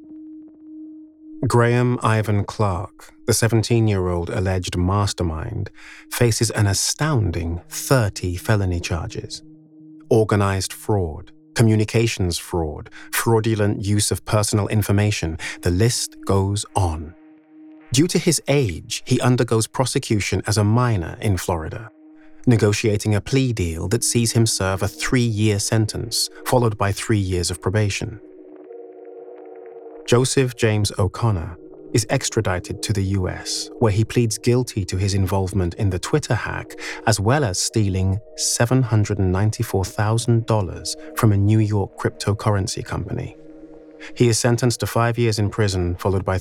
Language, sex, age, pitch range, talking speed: English, male, 30-49, 100-130 Hz, 125 wpm